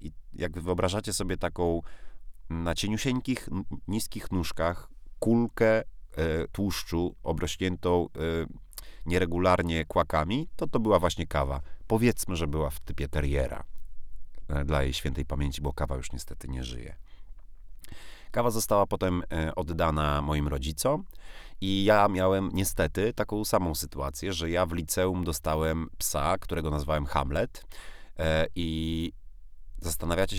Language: Polish